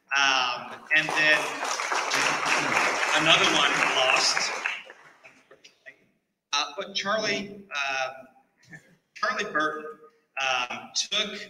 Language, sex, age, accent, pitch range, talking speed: English, male, 30-49, American, 135-200 Hz, 70 wpm